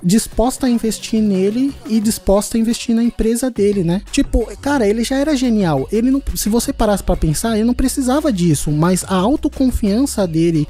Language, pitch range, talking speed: Portuguese, 160-225 Hz, 185 wpm